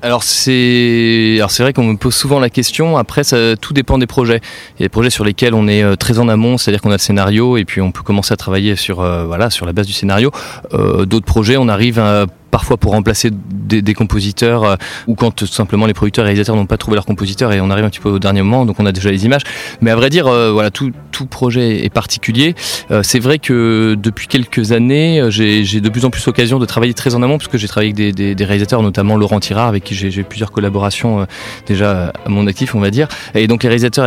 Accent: French